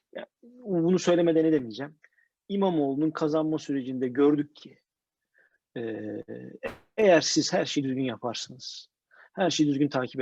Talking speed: 110 wpm